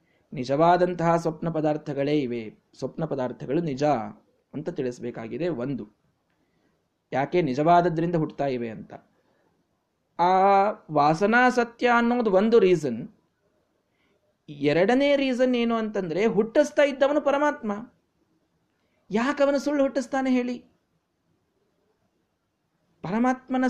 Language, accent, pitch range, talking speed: Kannada, native, 150-235 Hz, 85 wpm